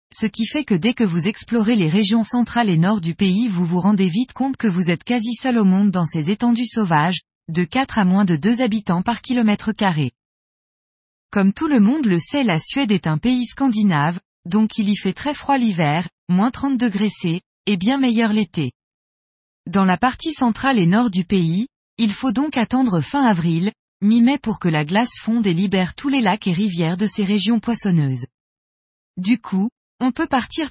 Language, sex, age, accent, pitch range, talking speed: French, female, 20-39, French, 180-240 Hz, 205 wpm